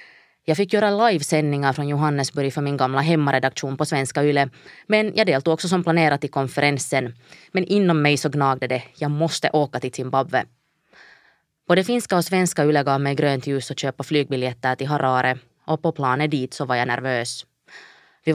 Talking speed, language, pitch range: 180 wpm, Swedish, 135-160 Hz